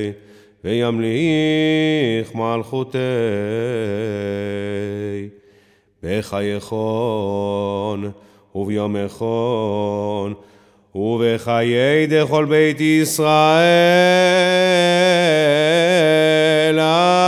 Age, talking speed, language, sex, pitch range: 30-49, 50 wpm, Hebrew, male, 120-180 Hz